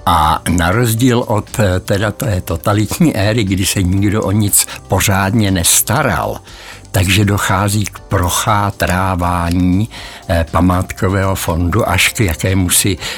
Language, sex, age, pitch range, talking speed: Czech, male, 60-79, 90-110 Hz, 115 wpm